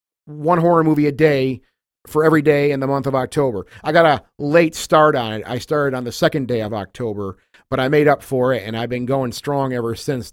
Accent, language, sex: American, English, male